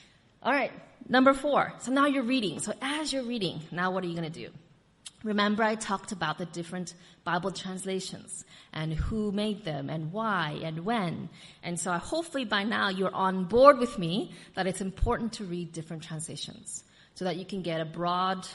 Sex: female